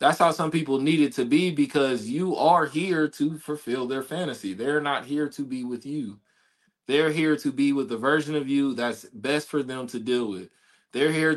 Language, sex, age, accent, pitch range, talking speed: English, male, 20-39, American, 130-180 Hz, 215 wpm